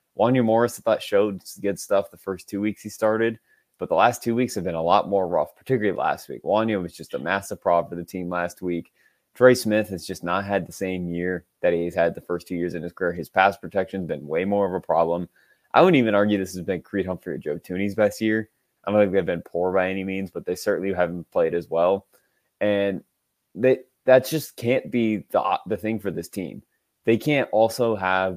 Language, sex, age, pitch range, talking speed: English, male, 20-39, 90-115 Hz, 235 wpm